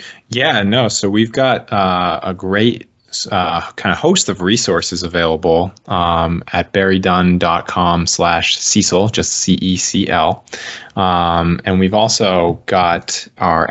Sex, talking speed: male, 115 wpm